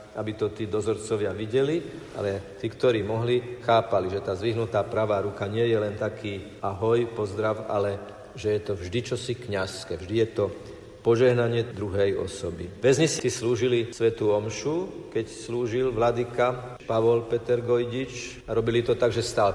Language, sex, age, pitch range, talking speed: Slovak, male, 50-69, 105-120 Hz, 155 wpm